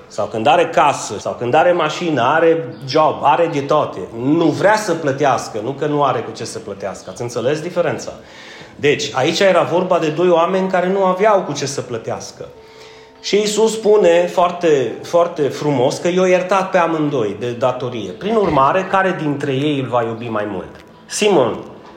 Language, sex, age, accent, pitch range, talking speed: Romanian, male, 30-49, native, 130-170 Hz, 180 wpm